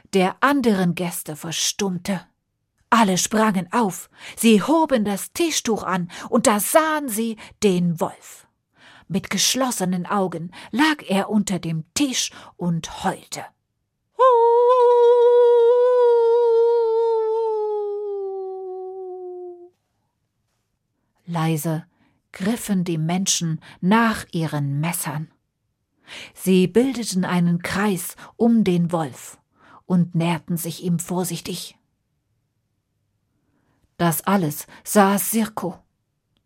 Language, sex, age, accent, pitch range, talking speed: German, female, 50-69, German, 170-265 Hz, 85 wpm